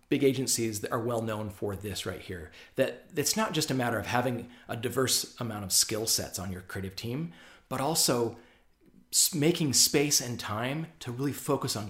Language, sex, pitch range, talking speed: English, male, 100-140 Hz, 190 wpm